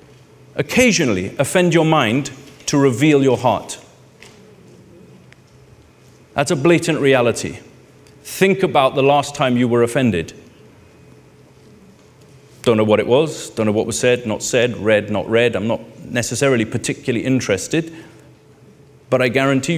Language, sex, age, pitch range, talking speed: English, male, 40-59, 120-160 Hz, 130 wpm